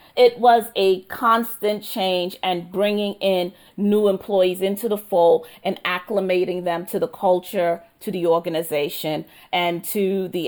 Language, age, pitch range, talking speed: English, 40-59, 190-225 Hz, 145 wpm